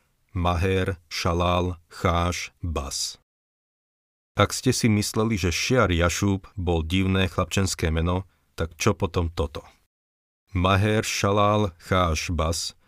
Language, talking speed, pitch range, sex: Slovak, 105 wpm, 80-95 Hz, male